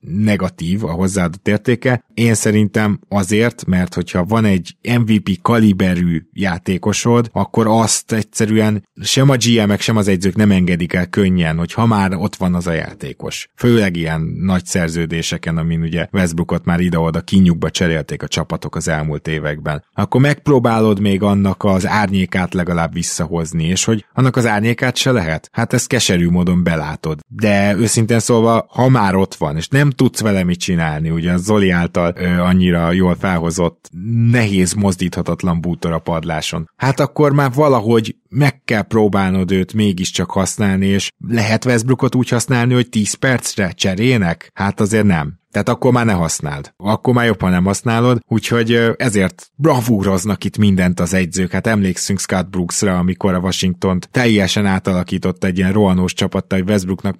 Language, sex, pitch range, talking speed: Hungarian, male, 90-115 Hz, 160 wpm